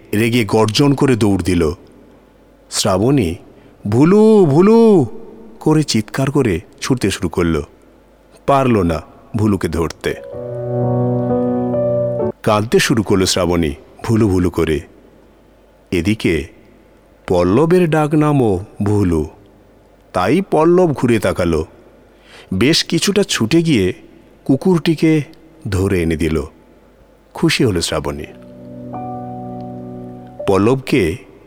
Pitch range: 90-140 Hz